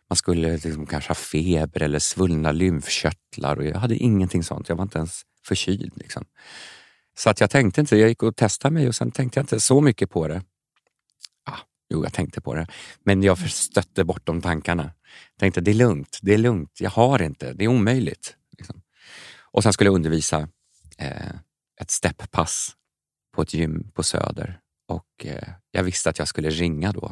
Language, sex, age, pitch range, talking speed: Swedish, male, 40-59, 80-105 Hz, 175 wpm